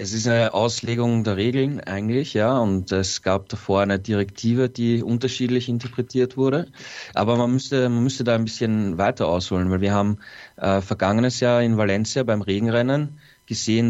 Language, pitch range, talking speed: German, 105-125 Hz, 170 wpm